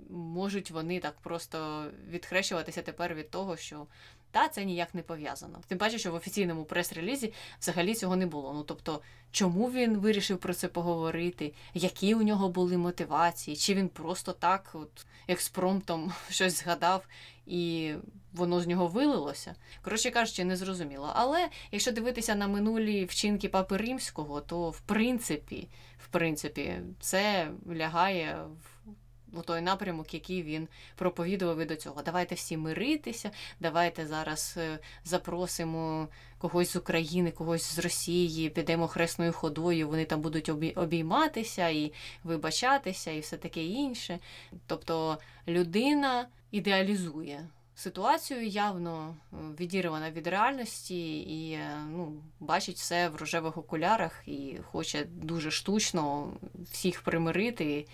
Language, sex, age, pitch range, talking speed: Ukrainian, female, 20-39, 160-190 Hz, 130 wpm